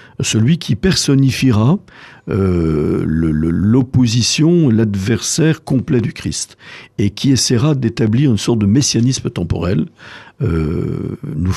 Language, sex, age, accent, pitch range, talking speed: French, male, 60-79, French, 85-120 Hz, 115 wpm